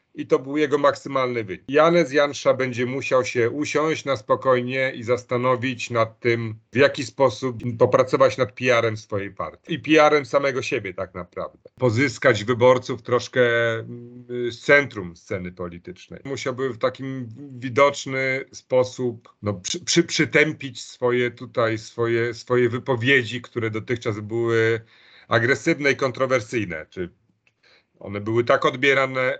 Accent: native